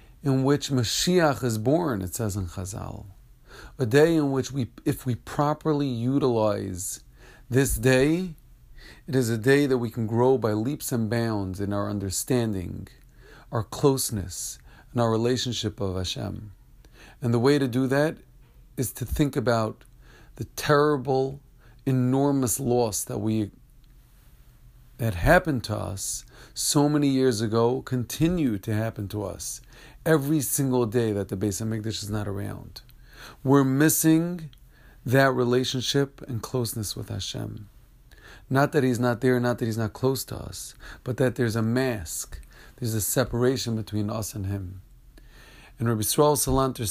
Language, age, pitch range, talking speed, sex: English, 40-59, 110-135 Hz, 150 wpm, male